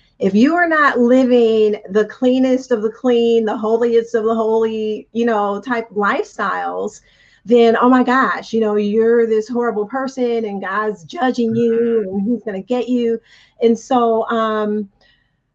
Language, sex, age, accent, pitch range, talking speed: English, female, 40-59, American, 210-245 Hz, 160 wpm